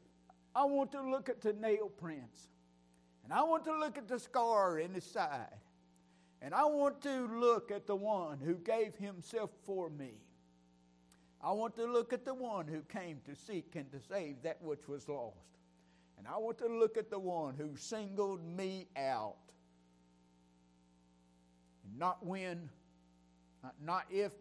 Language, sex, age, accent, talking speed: English, male, 50-69, American, 160 wpm